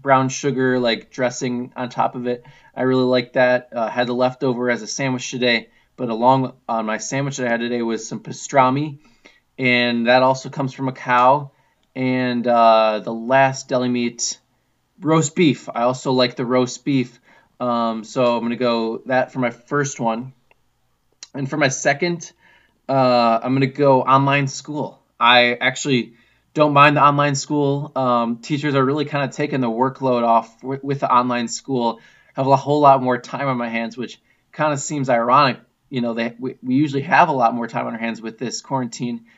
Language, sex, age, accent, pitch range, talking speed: English, male, 20-39, American, 120-135 Hz, 195 wpm